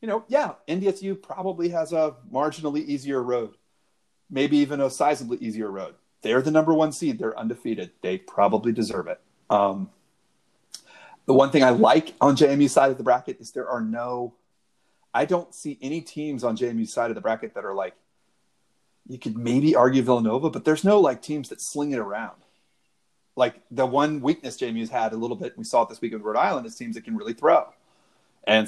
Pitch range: 115-150 Hz